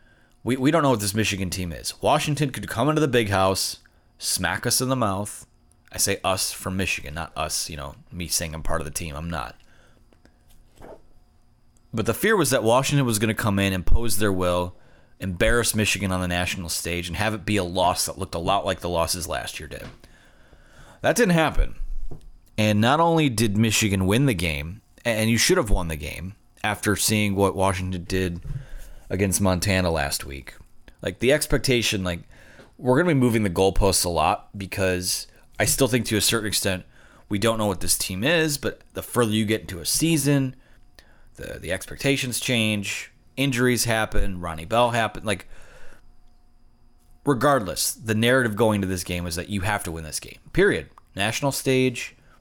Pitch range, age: 90-120 Hz, 30-49